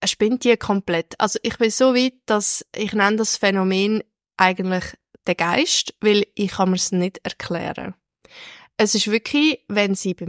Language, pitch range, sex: German, 185-235 Hz, female